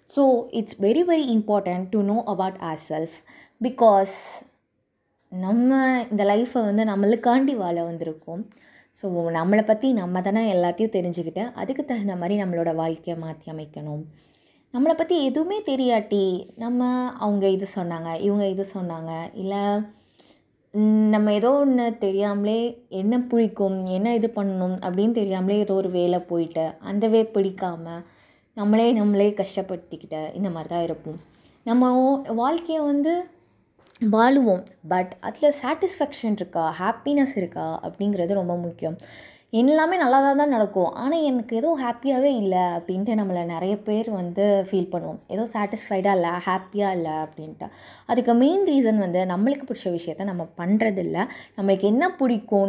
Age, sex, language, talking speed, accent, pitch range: 20-39, female, Tamil, 130 wpm, native, 180-235 Hz